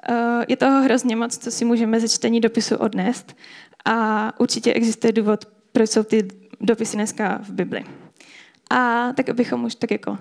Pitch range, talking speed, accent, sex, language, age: 225-255 Hz, 165 wpm, native, female, Czech, 10-29